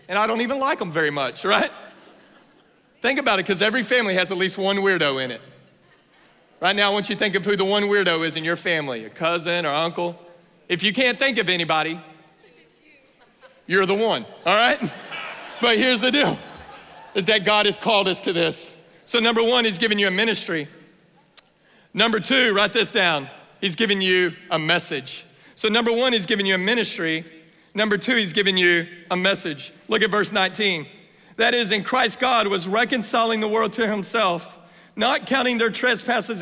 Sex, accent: male, American